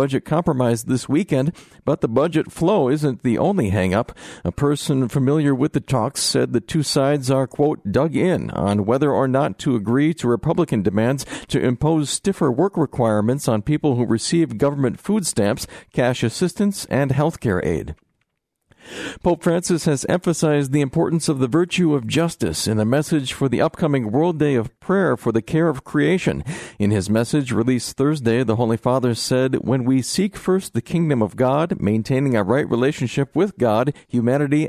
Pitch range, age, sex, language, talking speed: 120-150 Hz, 50-69, male, English, 180 wpm